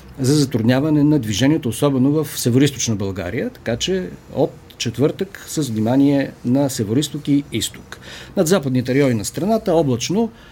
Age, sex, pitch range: 50-69, male, 120-155 Hz